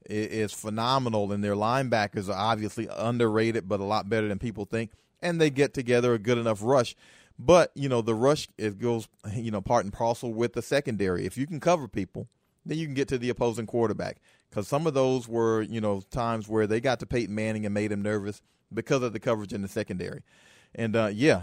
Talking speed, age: 220 wpm, 40-59